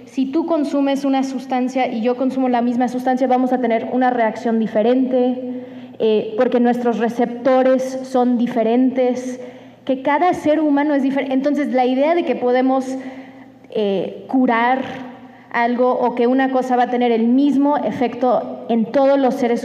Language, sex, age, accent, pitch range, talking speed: Spanish, female, 20-39, Mexican, 225-260 Hz, 160 wpm